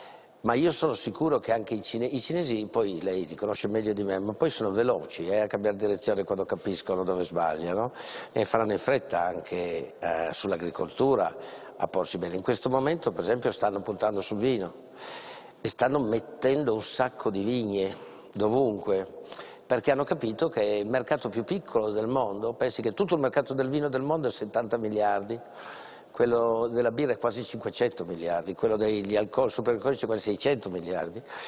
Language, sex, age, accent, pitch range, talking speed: Italian, male, 60-79, native, 105-150 Hz, 175 wpm